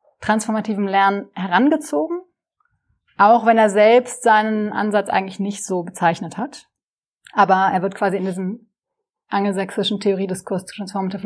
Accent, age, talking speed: German, 30-49, 125 wpm